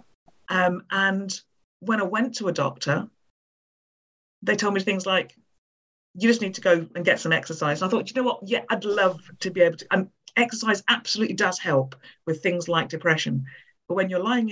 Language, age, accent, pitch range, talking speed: English, 50-69, British, 165-210 Hz, 195 wpm